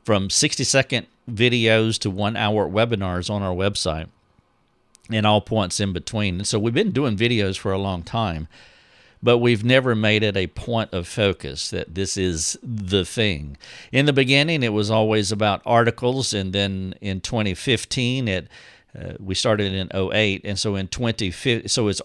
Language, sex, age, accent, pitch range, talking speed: English, male, 50-69, American, 95-115 Hz, 165 wpm